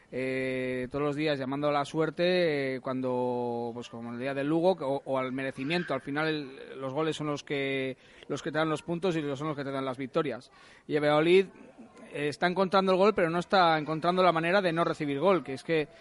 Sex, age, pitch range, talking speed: male, 20-39, 140-170 Hz, 245 wpm